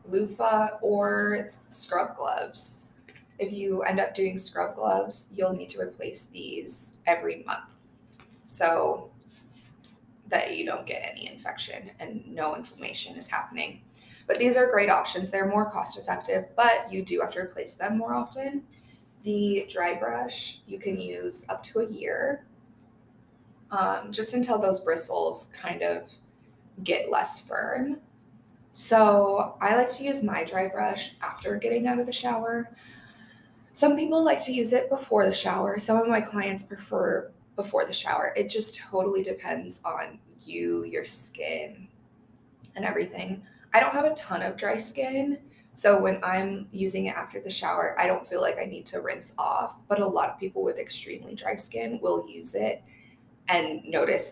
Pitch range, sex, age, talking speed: 190-265 Hz, female, 20-39, 165 wpm